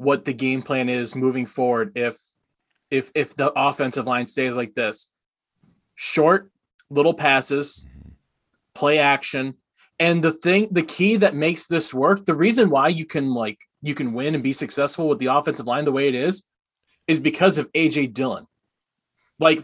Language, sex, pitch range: English, male, 130-165 Hz